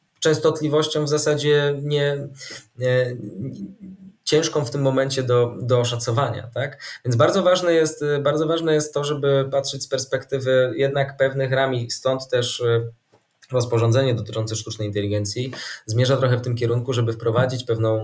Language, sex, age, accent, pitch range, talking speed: Polish, male, 20-39, native, 110-135 Hz, 145 wpm